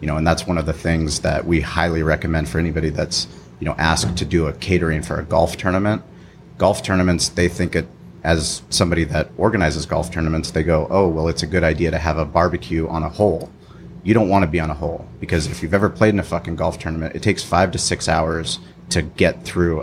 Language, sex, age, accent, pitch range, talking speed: English, male, 30-49, American, 80-85 Hz, 240 wpm